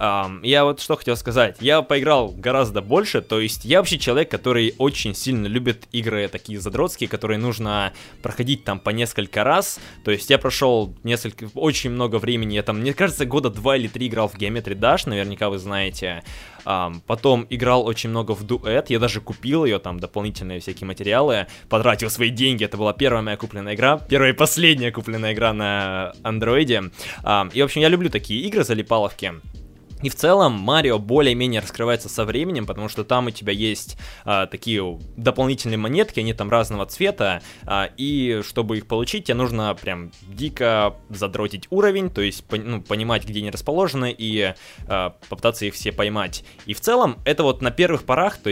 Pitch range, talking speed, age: 100-125 Hz, 180 wpm, 20-39